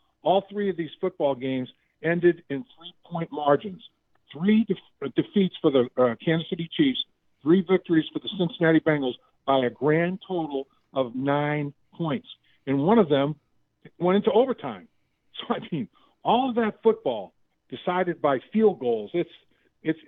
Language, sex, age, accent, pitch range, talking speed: English, male, 50-69, American, 140-180 Hz, 155 wpm